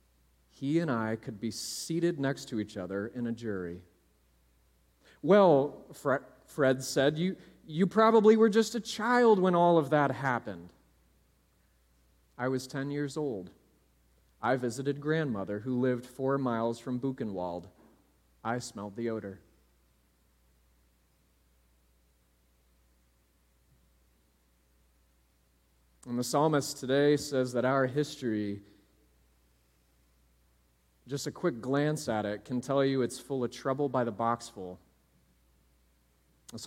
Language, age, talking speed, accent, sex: English, 30-49, 120 wpm, American, male